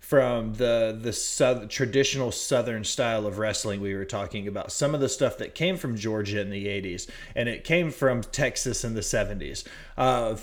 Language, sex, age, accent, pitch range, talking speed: English, male, 30-49, American, 115-140 Hz, 190 wpm